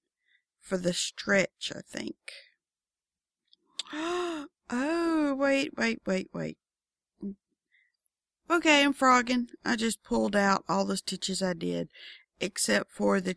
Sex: female